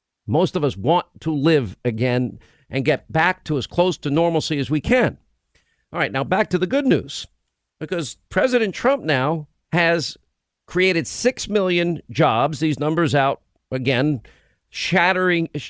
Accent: American